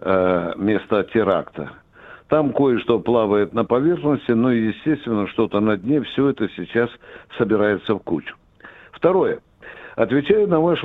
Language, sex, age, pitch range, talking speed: Russian, male, 60-79, 125-160 Hz, 120 wpm